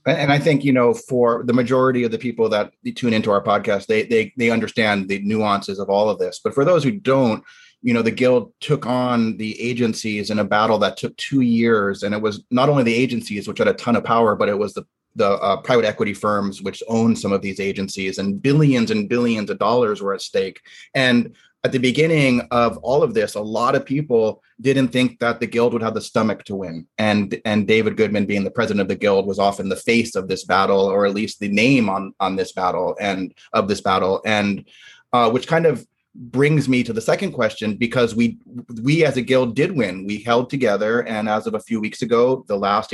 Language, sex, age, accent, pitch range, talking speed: English, male, 30-49, American, 105-125 Hz, 235 wpm